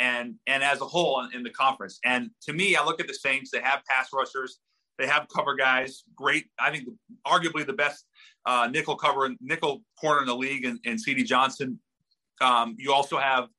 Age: 30-49